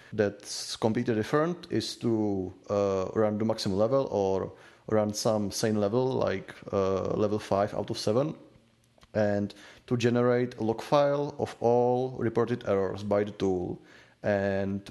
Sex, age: male, 30-49